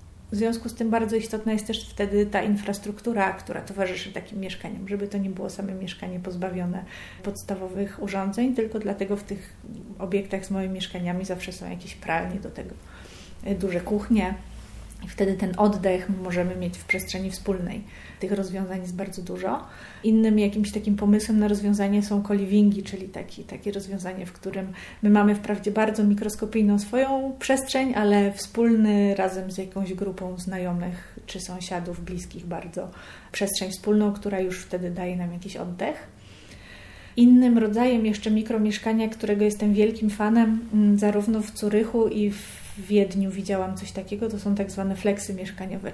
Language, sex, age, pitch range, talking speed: Polish, female, 30-49, 190-215 Hz, 155 wpm